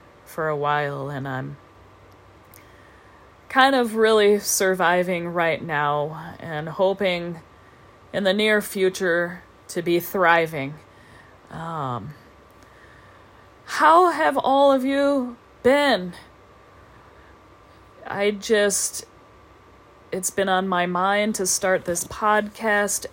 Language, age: English, 40-59